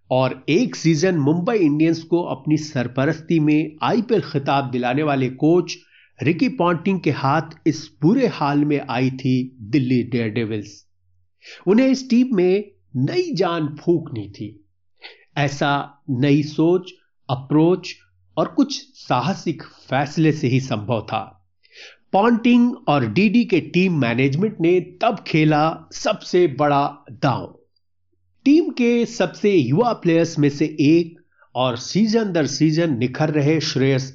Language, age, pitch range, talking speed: Hindi, 50-69, 130-180 Hz, 130 wpm